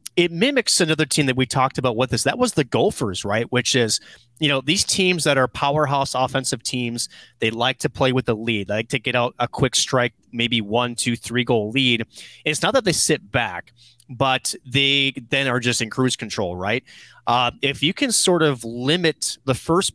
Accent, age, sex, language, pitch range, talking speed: American, 30-49, male, English, 115-140 Hz, 215 wpm